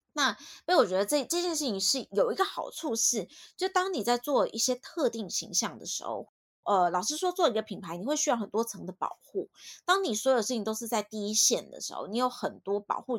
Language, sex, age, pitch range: Chinese, female, 20-39, 200-310 Hz